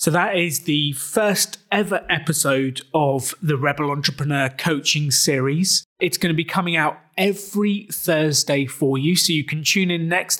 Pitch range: 140-175 Hz